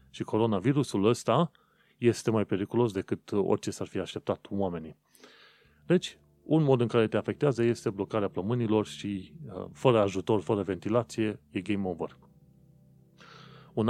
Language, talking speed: Romanian, 135 wpm